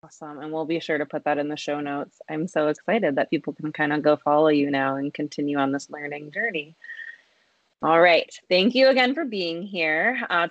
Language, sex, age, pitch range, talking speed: English, female, 20-39, 155-205 Hz, 225 wpm